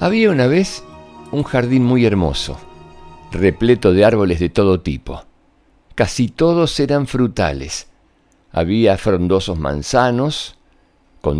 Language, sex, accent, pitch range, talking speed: Spanish, male, Argentinian, 95-125 Hz, 110 wpm